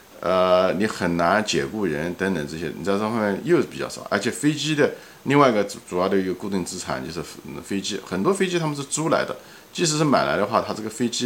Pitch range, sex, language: 95-155 Hz, male, Chinese